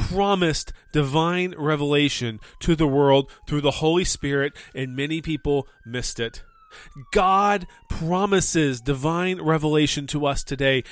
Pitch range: 115-155 Hz